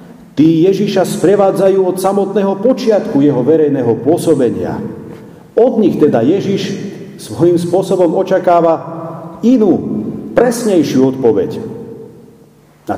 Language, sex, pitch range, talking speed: Slovak, male, 145-190 Hz, 90 wpm